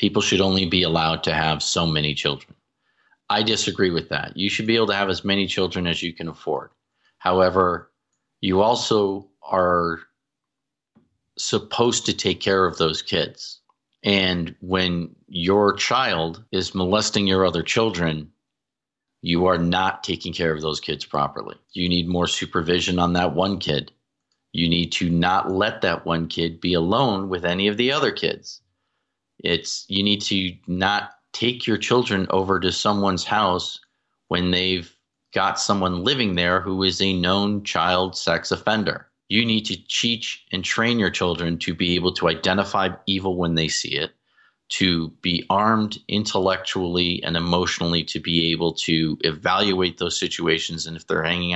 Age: 40-59